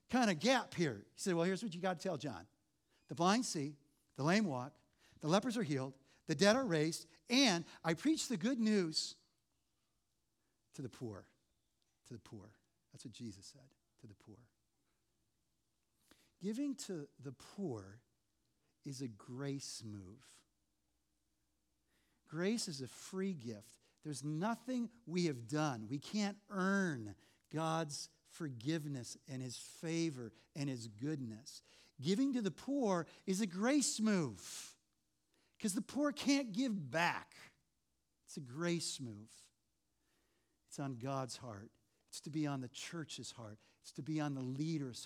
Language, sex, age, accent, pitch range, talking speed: English, male, 50-69, American, 120-185 Hz, 150 wpm